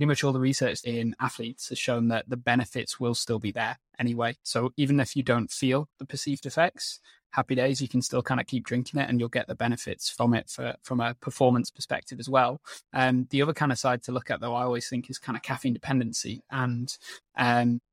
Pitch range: 125-135 Hz